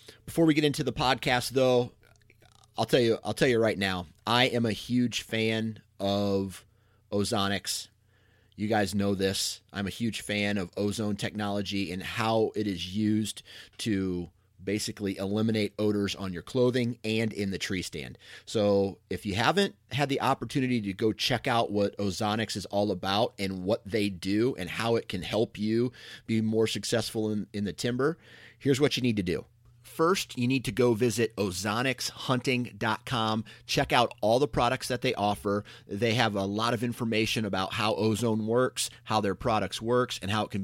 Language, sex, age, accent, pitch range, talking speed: English, male, 30-49, American, 100-120 Hz, 180 wpm